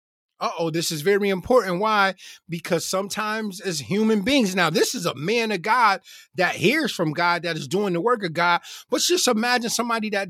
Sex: male